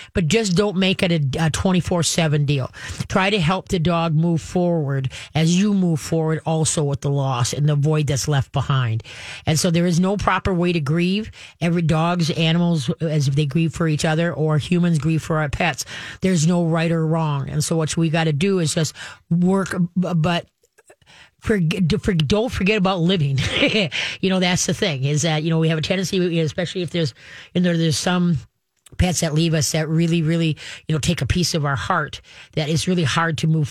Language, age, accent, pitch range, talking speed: English, 30-49, American, 150-175 Hz, 210 wpm